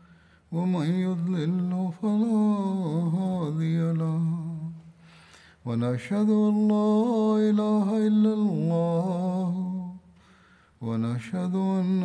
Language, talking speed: Bulgarian, 60 wpm